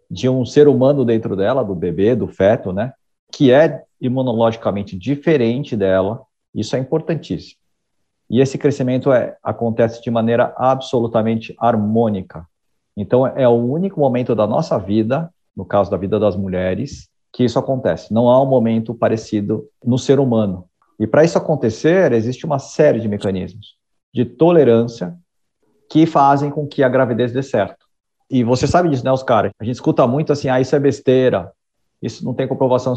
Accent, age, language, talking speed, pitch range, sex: Brazilian, 50-69, Portuguese, 165 wpm, 110-130 Hz, male